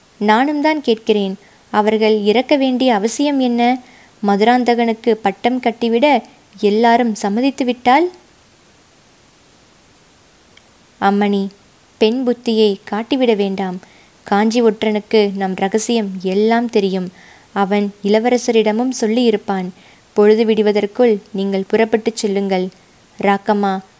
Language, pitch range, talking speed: Tamil, 200-240 Hz, 80 wpm